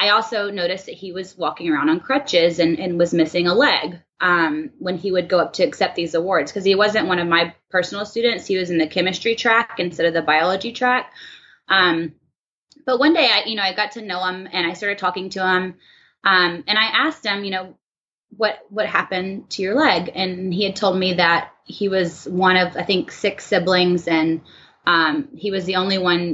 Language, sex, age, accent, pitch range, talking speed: English, female, 20-39, American, 165-195 Hz, 220 wpm